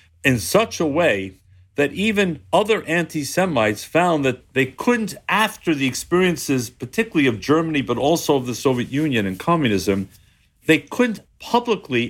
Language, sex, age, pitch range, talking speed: English, male, 50-69, 115-175 Hz, 145 wpm